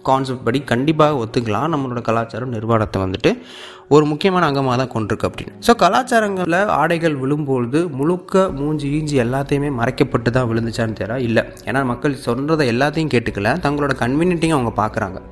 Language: Tamil